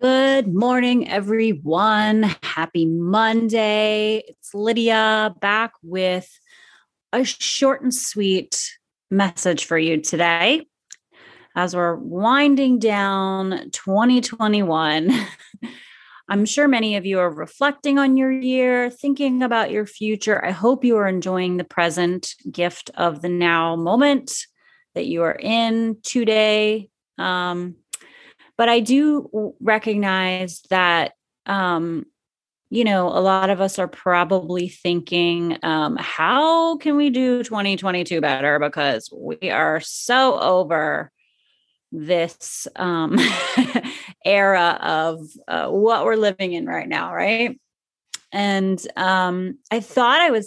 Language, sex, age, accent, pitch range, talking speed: English, female, 30-49, American, 180-250 Hz, 120 wpm